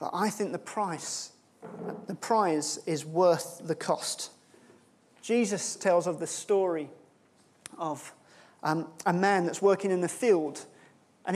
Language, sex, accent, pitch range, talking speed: English, male, British, 175-235 Hz, 135 wpm